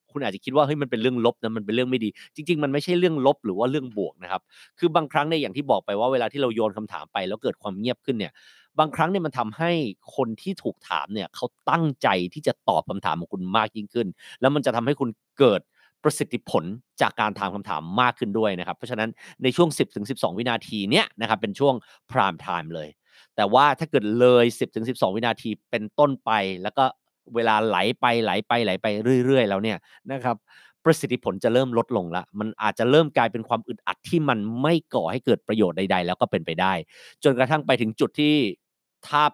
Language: Thai